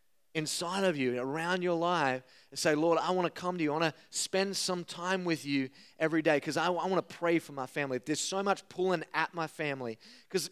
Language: English